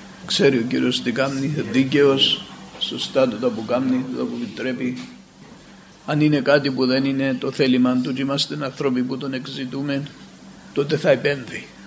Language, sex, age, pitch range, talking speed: Greek, male, 50-69, 130-160 Hz, 140 wpm